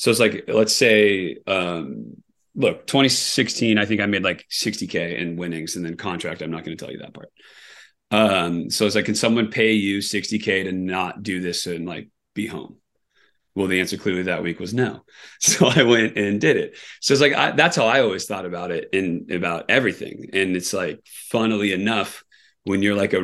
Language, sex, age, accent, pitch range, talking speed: English, male, 30-49, American, 90-105 Hz, 205 wpm